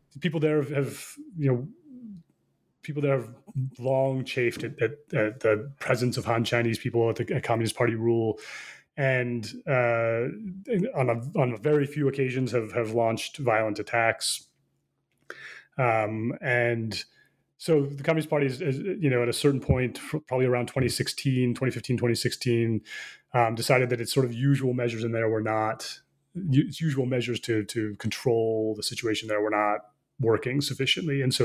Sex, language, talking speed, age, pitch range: male, English, 160 wpm, 30-49, 115-140 Hz